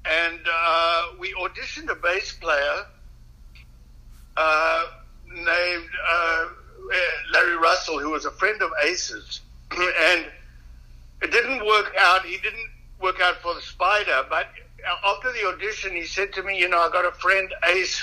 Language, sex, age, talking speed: English, male, 60-79, 150 wpm